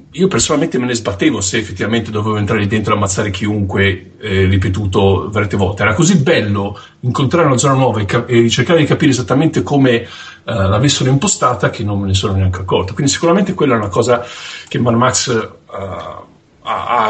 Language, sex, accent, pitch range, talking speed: Italian, male, native, 110-155 Hz, 190 wpm